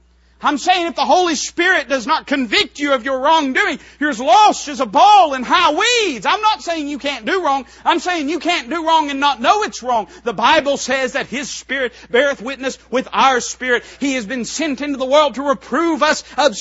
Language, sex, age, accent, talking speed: English, male, 40-59, American, 225 wpm